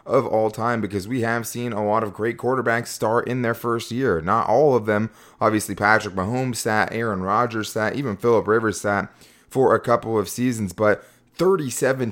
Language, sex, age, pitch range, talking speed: English, male, 20-39, 105-120 Hz, 195 wpm